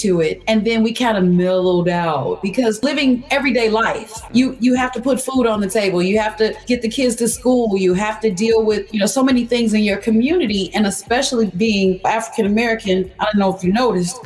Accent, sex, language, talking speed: American, female, English, 225 wpm